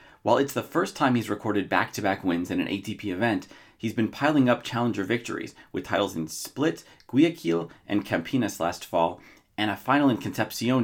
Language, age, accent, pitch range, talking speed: English, 30-49, American, 100-140 Hz, 185 wpm